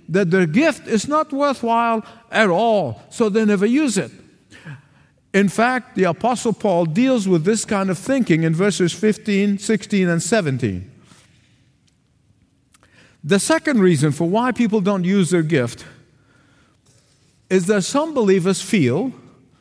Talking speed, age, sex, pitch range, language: 140 wpm, 50-69, male, 155-230 Hz, English